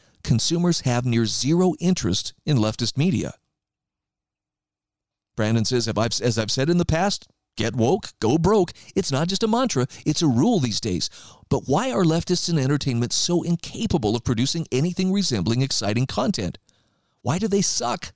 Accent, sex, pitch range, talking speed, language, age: American, male, 120-175 Hz, 160 wpm, English, 40-59